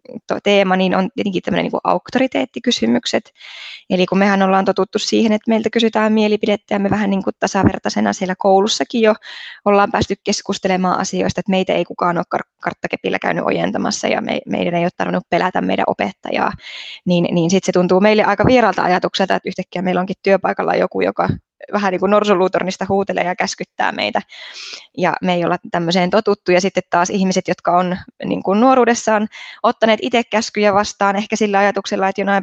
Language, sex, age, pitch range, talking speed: Finnish, female, 20-39, 190-220 Hz, 175 wpm